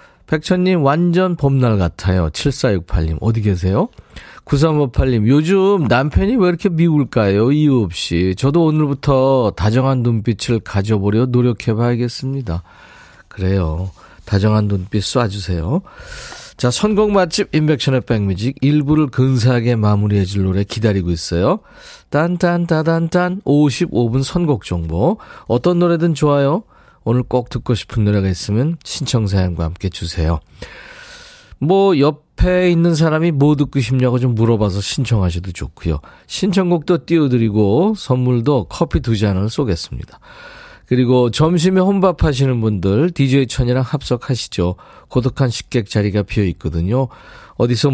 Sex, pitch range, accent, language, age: male, 100-150 Hz, native, Korean, 40-59